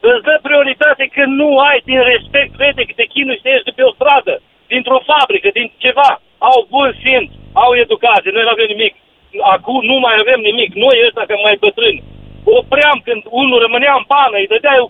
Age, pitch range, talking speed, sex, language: 50-69, 260-330 Hz, 210 wpm, male, Romanian